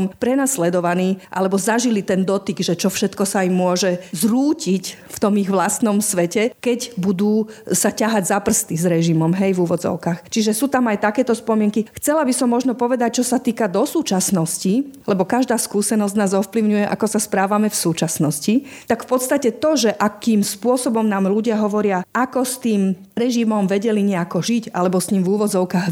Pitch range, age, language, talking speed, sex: 190-230 Hz, 40-59, Slovak, 175 wpm, female